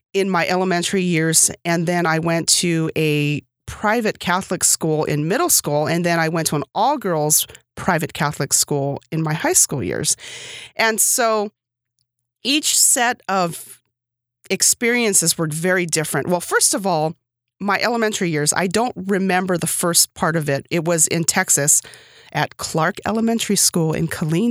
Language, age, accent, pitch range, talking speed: English, 30-49, American, 155-195 Hz, 160 wpm